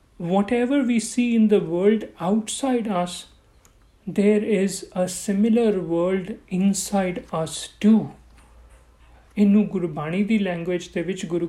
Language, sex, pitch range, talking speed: Punjabi, male, 175-225 Hz, 120 wpm